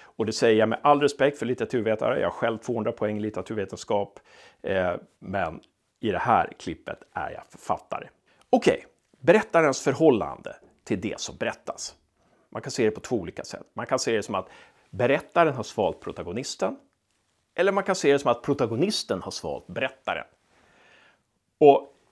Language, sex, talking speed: Swedish, male, 165 wpm